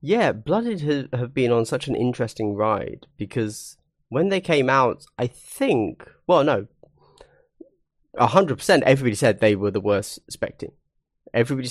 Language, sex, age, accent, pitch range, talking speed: English, male, 30-49, British, 105-145 Hz, 140 wpm